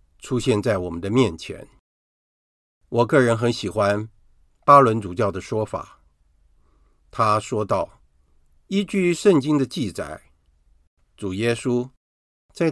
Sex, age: male, 50-69